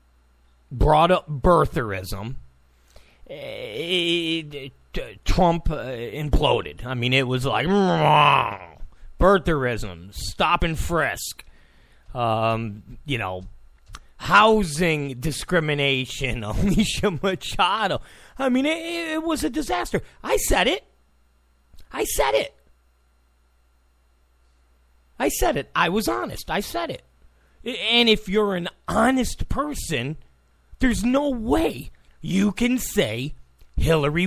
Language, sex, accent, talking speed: English, male, American, 95 wpm